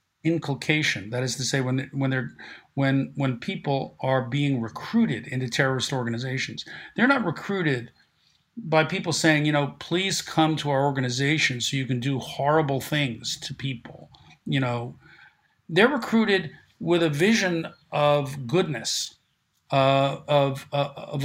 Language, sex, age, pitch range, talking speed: English, male, 40-59, 125-155 Hz, 140 wpm